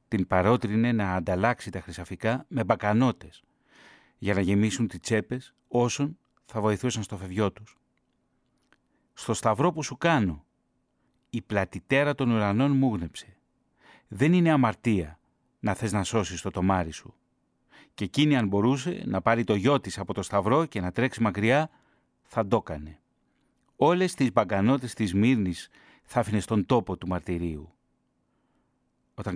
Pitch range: 95-125 Hz